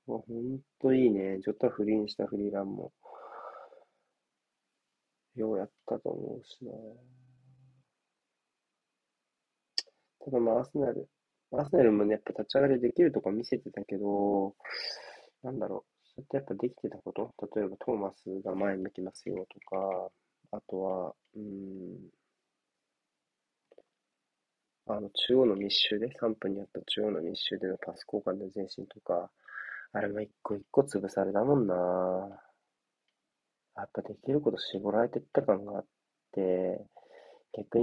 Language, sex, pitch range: Japanese, male, 100-125 Hz